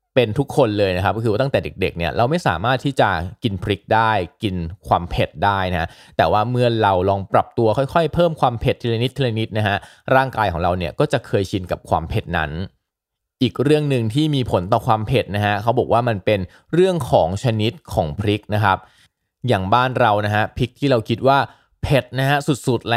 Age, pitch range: 20-39, 95-125 Hz